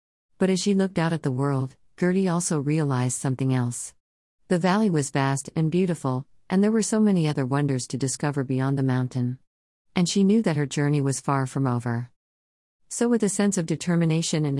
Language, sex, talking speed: English, female, 195 wpm